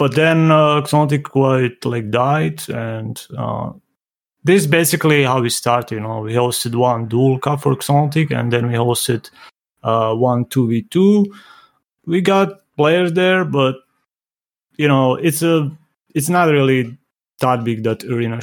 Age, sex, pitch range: 30-49, male, 120-145 Hz